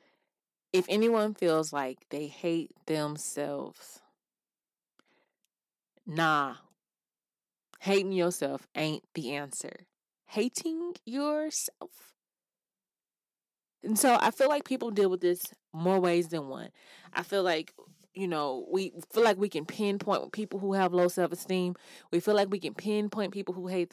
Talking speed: 135 wpm